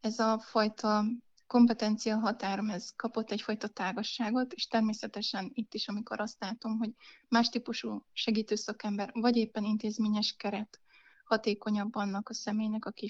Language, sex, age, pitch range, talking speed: Hungarian, female, 20-39, 215-235 Hz, 135 wpm